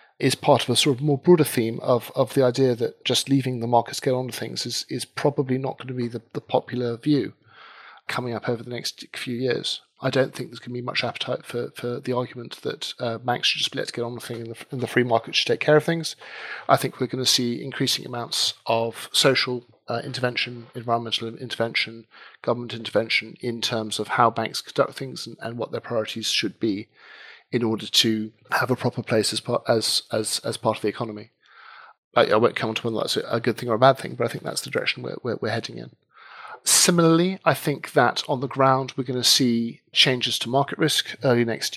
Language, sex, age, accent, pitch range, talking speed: English, male, 40-59, British, 115-135 Hz, 225 wpm